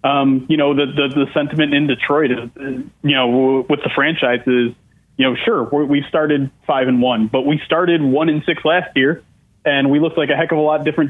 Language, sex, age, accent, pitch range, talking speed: English, male, 20-39, American, 135-160 Hz, 245 wpm